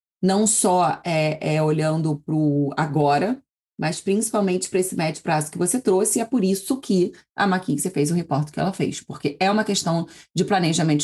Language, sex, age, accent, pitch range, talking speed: Portuguese, female, 20-39, Brazilian, 155-210 Hz, 195 wpm